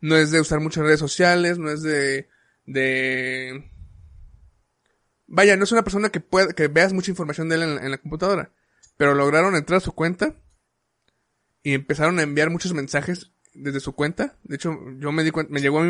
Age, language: 20-39, Spanish